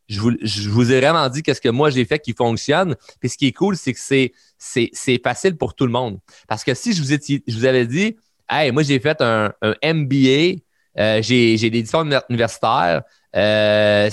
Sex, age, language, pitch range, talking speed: male, 30-49, French, 120-160 Hz, 230 wpm